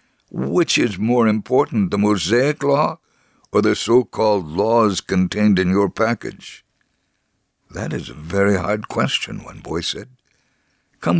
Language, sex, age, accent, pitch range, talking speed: English, male, 60-79, American, 100-120 Hz, 135 wpm